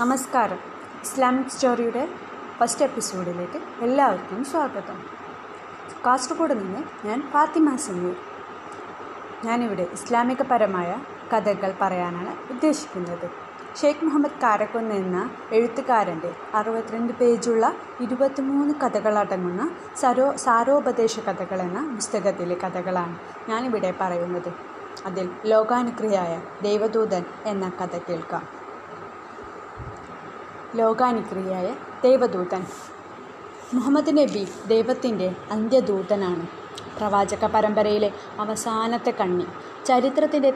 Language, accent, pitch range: Malayalam, native, 195-270 Hz